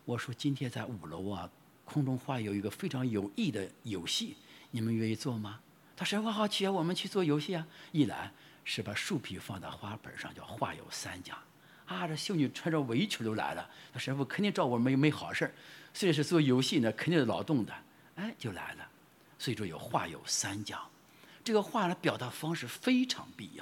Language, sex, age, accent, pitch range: English, male, 50-69, Chinese, 120-180 Hz